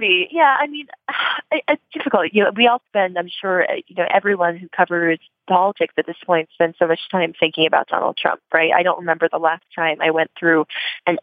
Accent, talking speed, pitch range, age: American, 205 wpm, 165-195 Hz, 20-39